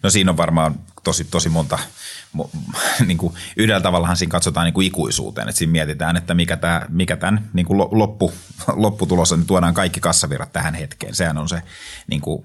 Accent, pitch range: native, 80-95 Hz